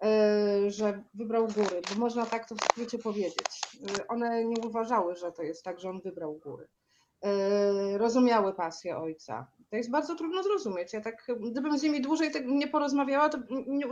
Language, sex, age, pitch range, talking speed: Polish, female, 40-59, 210-255 Hz, 175 wpm